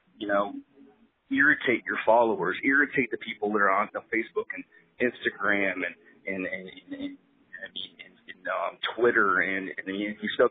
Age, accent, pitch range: 30-49, American, 115-150 Hz